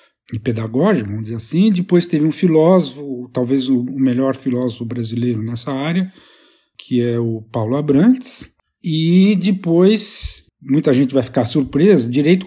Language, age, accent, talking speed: Portuguese, 50-69, Brazilian, 140 wpm